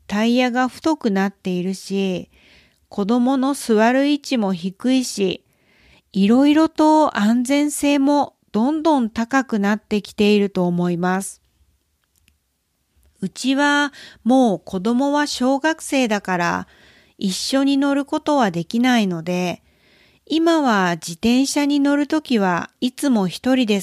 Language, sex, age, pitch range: Japanese, female, 40-59, 190-280 Hz